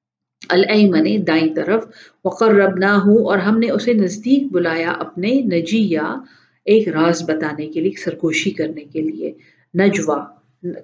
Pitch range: 175-230 Hz